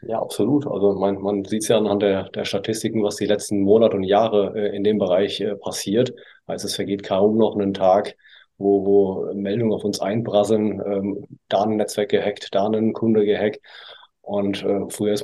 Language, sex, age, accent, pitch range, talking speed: German, male, 30-49, German, 100-110 Hz, 180 wpm